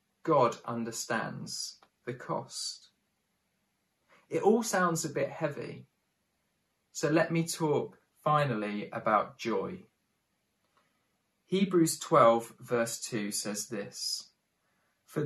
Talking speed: 95 wpm